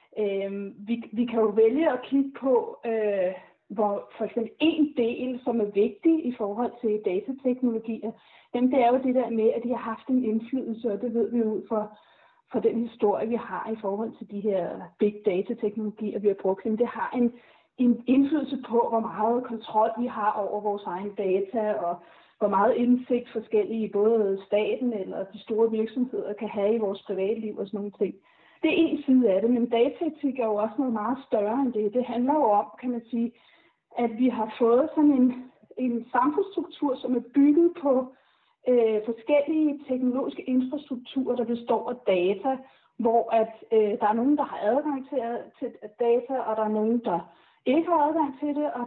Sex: female